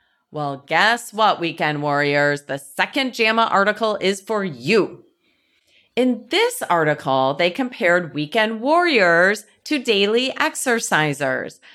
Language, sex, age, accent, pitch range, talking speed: English, female, 30-49, American, 160-230 Hz, 110 wpm